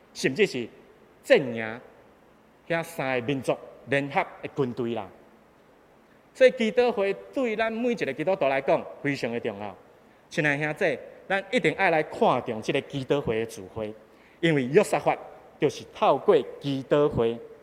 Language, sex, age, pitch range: Chinese, male, 30-49, 120-170 Hz